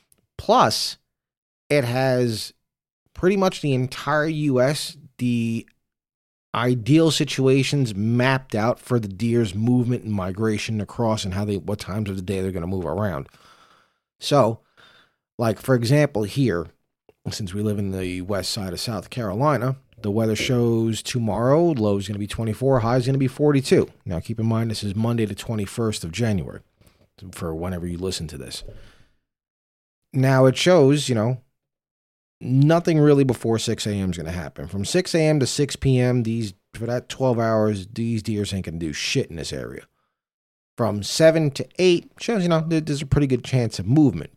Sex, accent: male, American